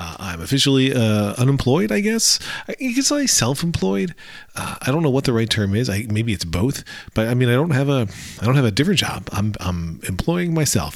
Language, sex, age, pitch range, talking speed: English, male, 40-59, 95-125 Hz, 225 wpm